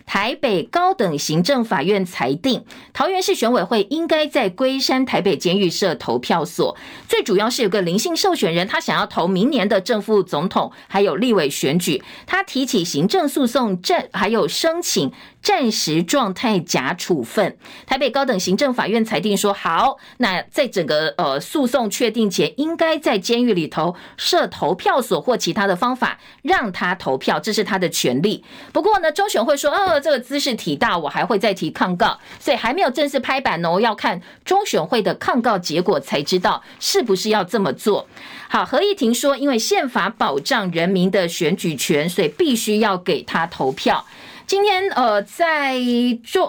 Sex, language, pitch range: female, Chinese, 200-295 Hz